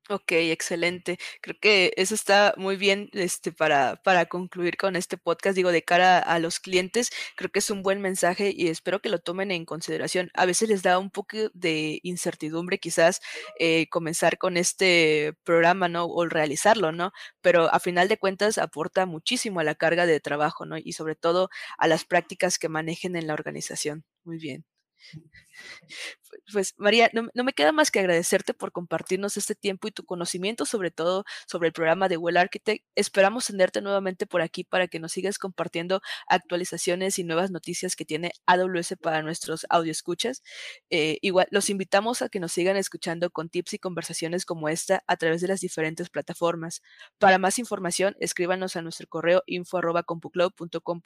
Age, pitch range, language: 20-39, 165-195 Hz, Spanish